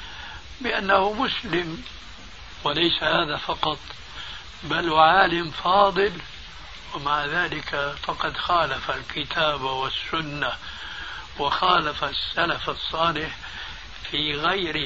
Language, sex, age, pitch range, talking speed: Arabic, male, 60-79, 135-175 Hz, 75 wpm